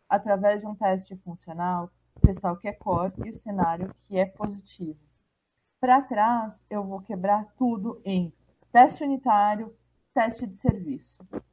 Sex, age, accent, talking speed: female, 30-49, Brazilian, 145 wpm